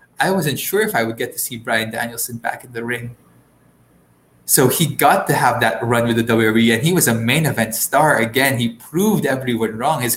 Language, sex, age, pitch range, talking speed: English, male, 20-39, 115-150 Hz, 225 wpm